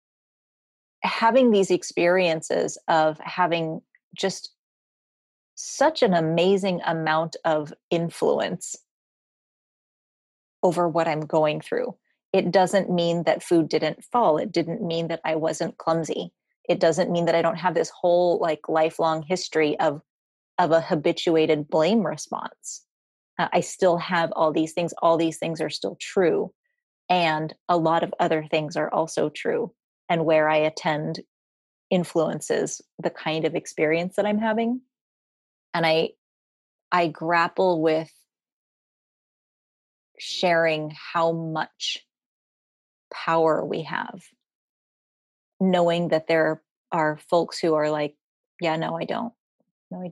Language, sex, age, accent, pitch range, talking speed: English, female, 30-49, American, 160-180 Hz, 130 wpm